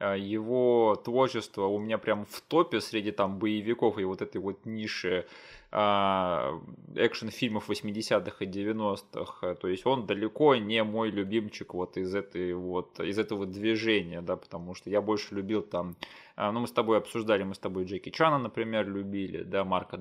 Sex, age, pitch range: male, 20-39, 95-110 Hz